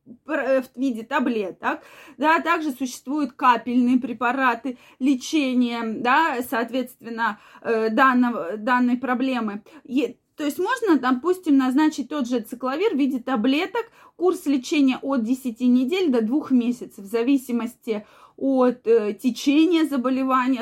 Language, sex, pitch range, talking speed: Russian, female, 235-280 Hz, 110 wpm